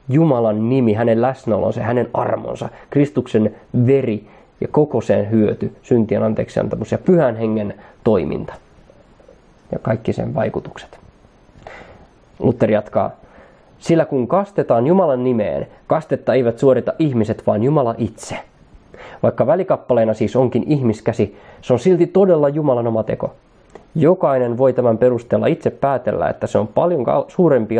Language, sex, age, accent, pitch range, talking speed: Finnish, male, 20-39, native, 110-135 Hz, 125 wpm